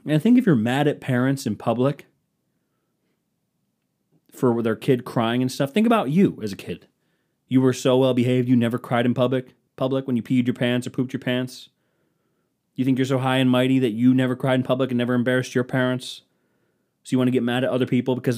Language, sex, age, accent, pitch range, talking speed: English, male, 30-49, American, 125-175 Hz, 220 wpm